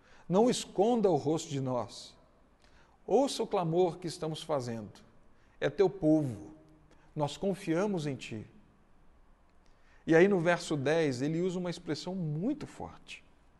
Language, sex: Portuguese, male